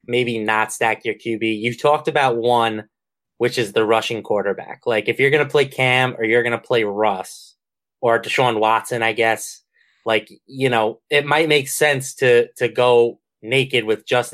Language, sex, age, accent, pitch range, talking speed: English, male, 20-39, American, 115-145 Hz, 190 wpm